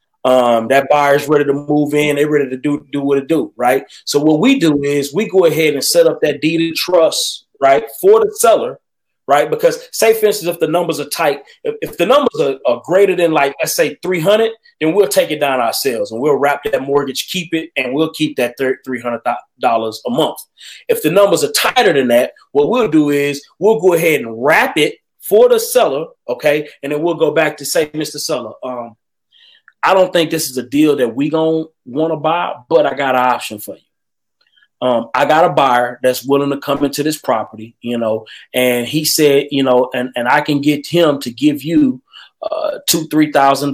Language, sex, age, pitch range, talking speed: English, male, 30-49, 125-160 Hz, 220 wpm